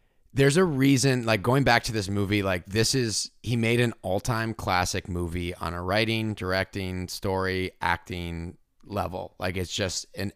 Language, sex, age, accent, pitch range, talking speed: English, male, 30-49, American, 90-115 Hz, 170 wpm